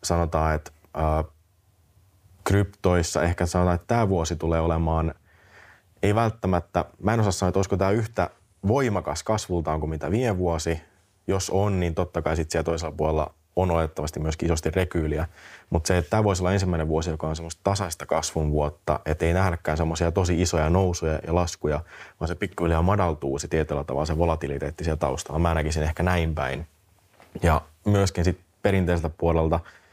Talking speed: 170 wpm